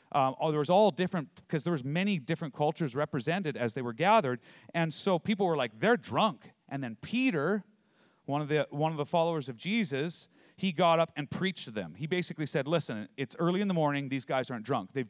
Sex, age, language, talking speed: male, 40-59, English, 225 wpm